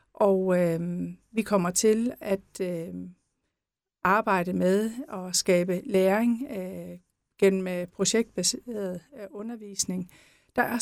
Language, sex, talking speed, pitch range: Danish, female, 110 wpm, 195-240 Hz